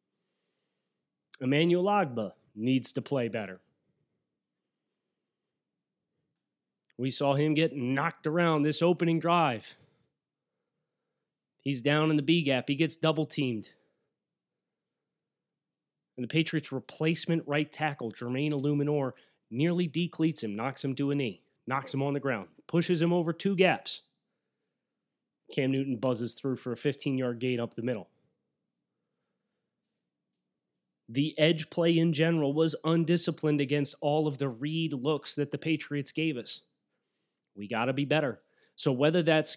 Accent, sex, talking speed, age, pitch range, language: American, male, 130 wpm, 30-49, 135-165 Hz, English